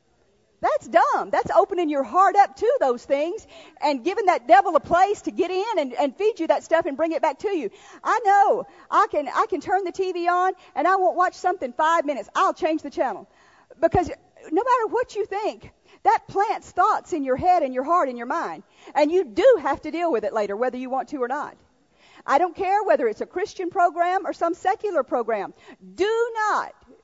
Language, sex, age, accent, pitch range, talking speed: English, female, 50-69, American, 280-370 Hz, 220 wpm